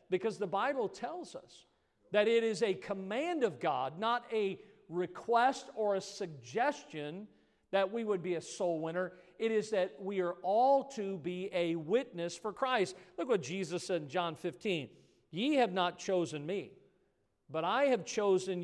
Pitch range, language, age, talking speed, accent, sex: 160-225 Hz, English, 50-69, 170 wpm, American, male